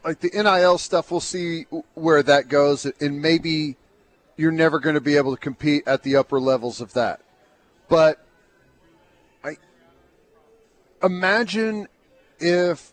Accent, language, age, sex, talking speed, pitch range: American, English, 40-59, male, 130 wpm, 145-175 Hz